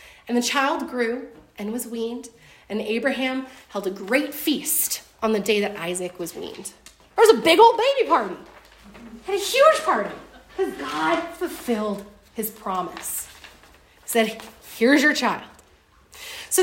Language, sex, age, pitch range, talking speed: English, female, 30-49, 215-335 Hz, 150 wpm